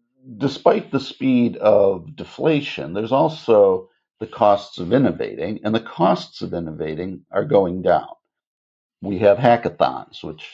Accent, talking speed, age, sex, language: American, 130 wpm, 60-79, male, English